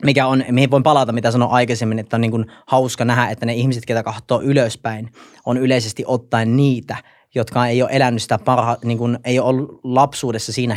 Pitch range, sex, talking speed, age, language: 115-130 Hz, male, 190 wpm, 30-49, Finnish